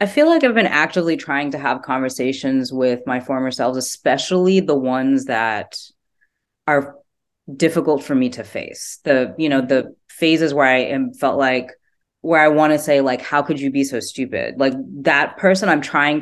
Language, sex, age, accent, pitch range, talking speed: English, female, 20-39, American, 130-165 Hz, 190 wpm